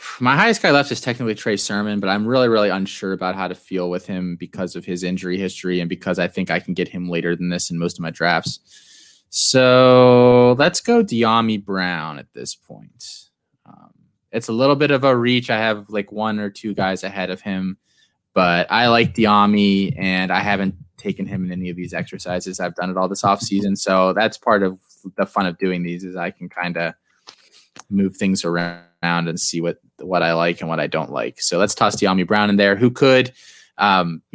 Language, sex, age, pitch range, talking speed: English, male, 20-39, 90-105 Hz, 215 wpm